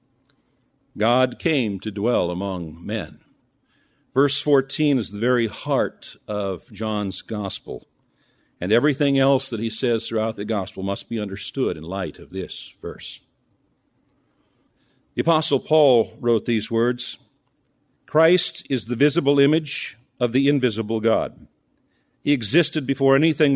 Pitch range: 110-140 Hz